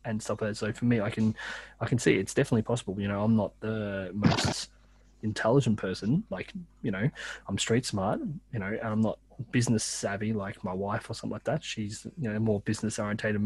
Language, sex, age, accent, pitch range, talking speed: English, male, 20-39, Australian, 105-125 Hz, 220 wpm